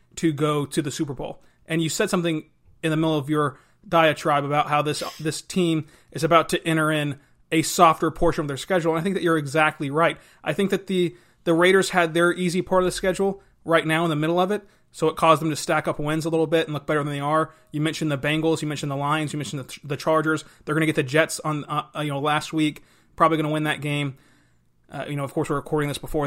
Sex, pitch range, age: male, 150-170 Hz, 30-49